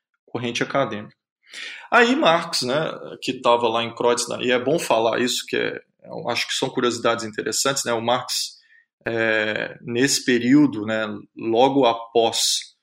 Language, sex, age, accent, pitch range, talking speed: Portuguese, male, 20-39, Brazilian, 115-150 Hz, 155 wpm